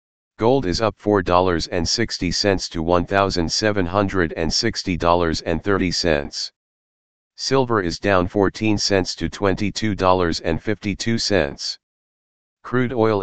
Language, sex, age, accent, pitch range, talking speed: English, male, 40-59, American, 85-100 Hz, 65 wpm